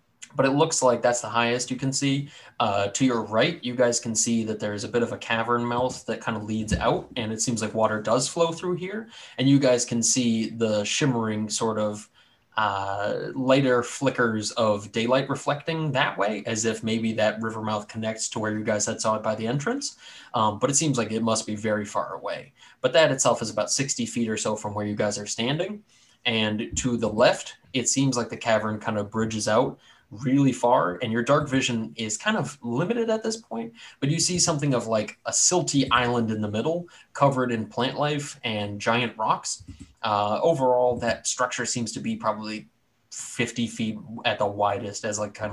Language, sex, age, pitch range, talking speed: English, male, 20-39, 110-130 Hz, 210 wpm